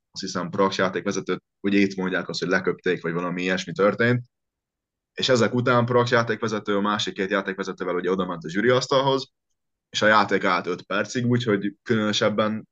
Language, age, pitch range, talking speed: Hungarian, 20-39, 90-105 Hz, 170 wpm